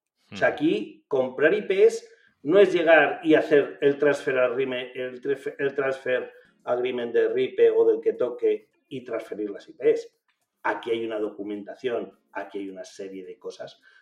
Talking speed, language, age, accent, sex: 140 wpm, Spanish, 40-59, Spanish, male